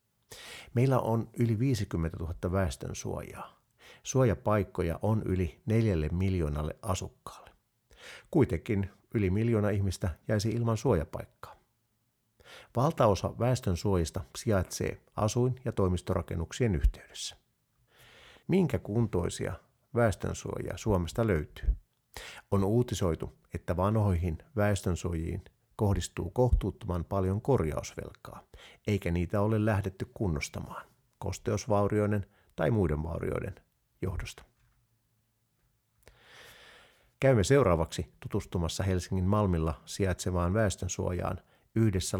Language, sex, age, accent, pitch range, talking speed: Finnish, male, 50-69, native, 90-115 Hz, 80 wpm